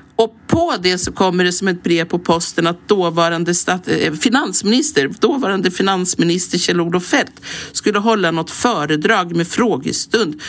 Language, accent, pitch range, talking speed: English, Swedish, 165-205 Hz, 130 wpm